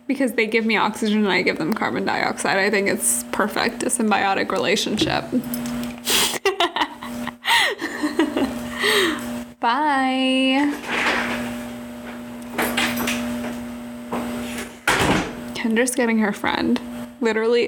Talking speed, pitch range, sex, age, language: 80 wpm, 200-290 Hz, female, 10-29, English